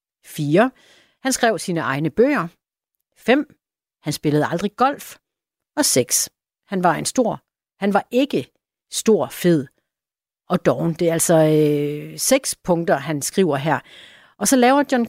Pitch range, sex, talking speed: 165-230 Hz, female, 145 wpm